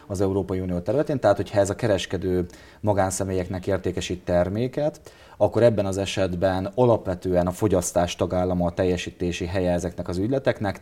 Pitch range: 90-105 Hz